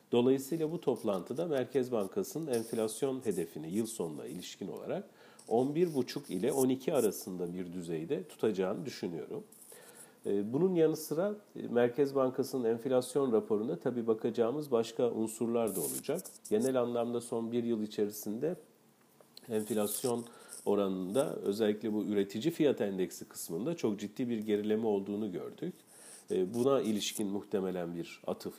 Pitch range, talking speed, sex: 100-135 Hz, 120 wpm, male